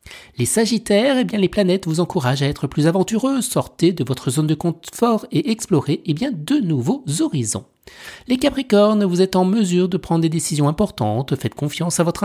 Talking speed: 195 wpm